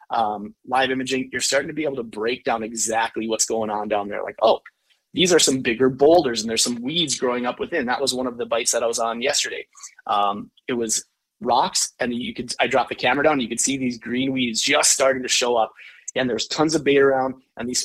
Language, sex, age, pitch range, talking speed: English, male, 30-49, 115-140 Hz, 250 wpm